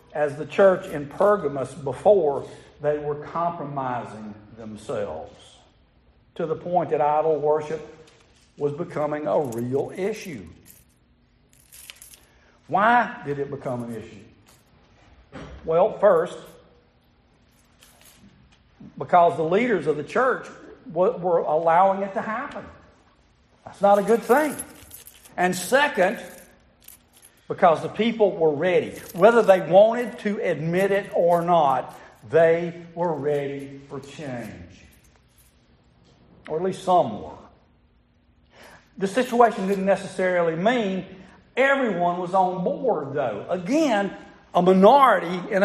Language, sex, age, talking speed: English, male, 60-79, 110 wpm